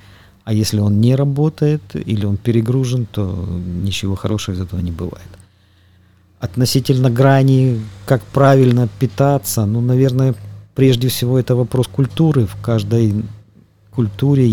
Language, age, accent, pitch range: Russian, 50-69, native, 100-125 Hz